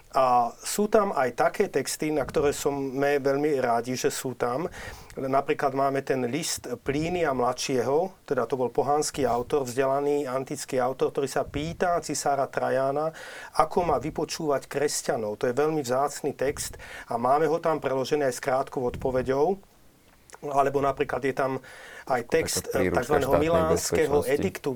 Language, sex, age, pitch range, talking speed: Slovak, male, 40-59, 130-150 Hz, 150 wpm